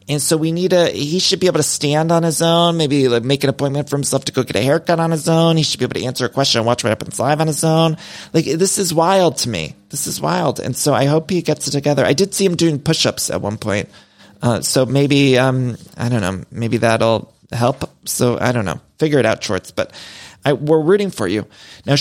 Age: 30-49